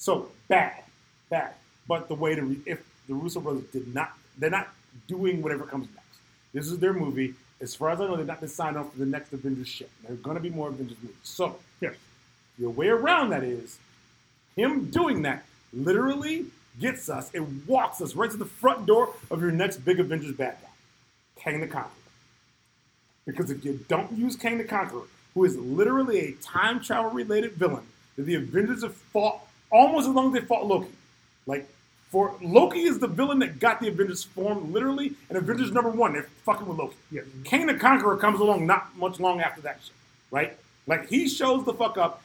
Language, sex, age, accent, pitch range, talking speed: English, male, 30-49, American, 145-225 Hz, 205 wpm